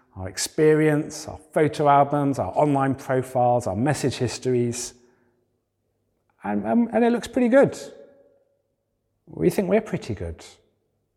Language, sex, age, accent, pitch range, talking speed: English, male, 40-59, British, 110-150 Hz, 120 wpm